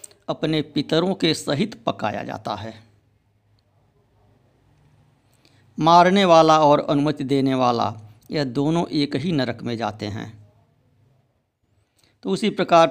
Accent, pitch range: native, 110-150 Hz